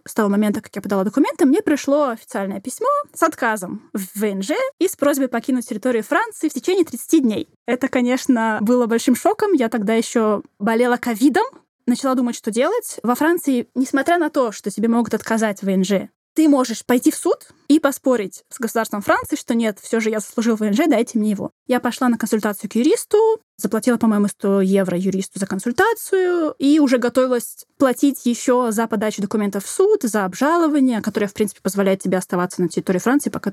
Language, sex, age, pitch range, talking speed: Russian, female, 20-39, 220-285 Hz, 190 wpm